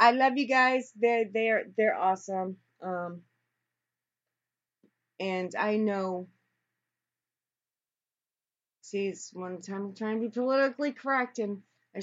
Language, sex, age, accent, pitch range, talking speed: English, female, 30-49, American, 190-225 Hz, 120 wpm